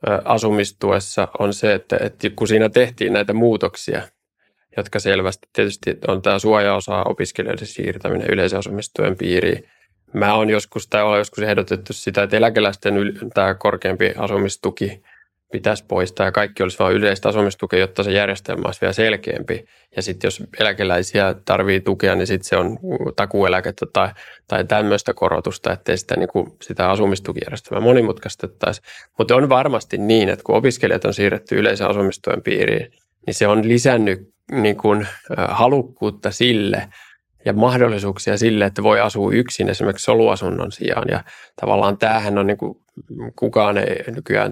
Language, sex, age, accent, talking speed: Finnish, male, 20-39, native, 135 wpm